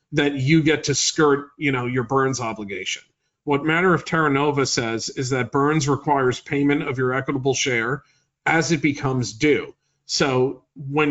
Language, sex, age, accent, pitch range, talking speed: English, male, 40-59, American, 125-150 Hz, 165 wpm